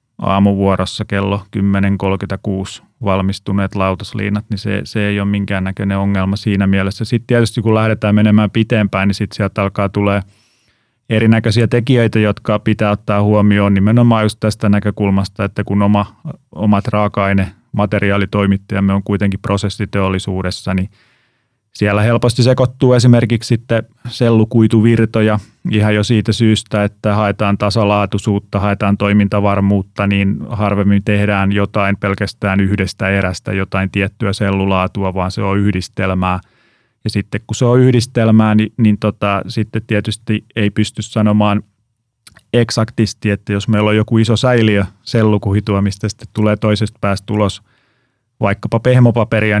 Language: Finnish